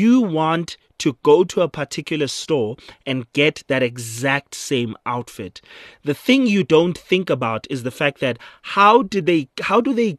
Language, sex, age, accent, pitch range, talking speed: English, male, 30-49, South African, 145-185 Hz, 175 wpm